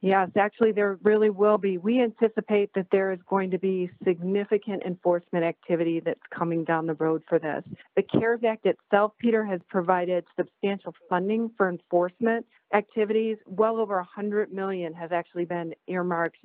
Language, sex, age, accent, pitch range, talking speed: English, female, 40-59, American, 170-205 Hz, 160 wpm